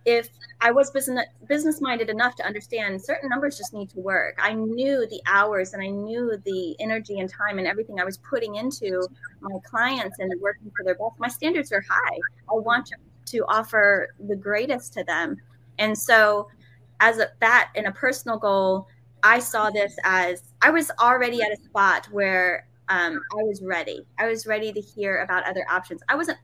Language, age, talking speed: English, 20-39, 190 wpm